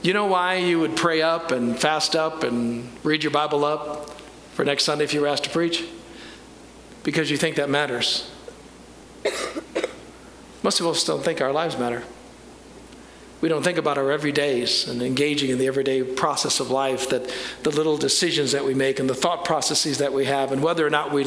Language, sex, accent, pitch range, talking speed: English, male, American, 140-170 Hz, 195 wpm